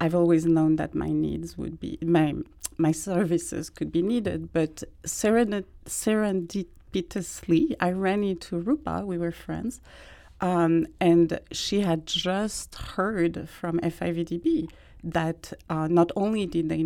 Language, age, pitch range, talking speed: English, 40-59, 160-180 Hz, 135 wpm